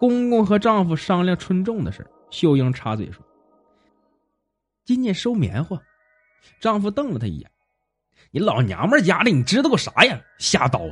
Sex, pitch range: male, 140-225 Hz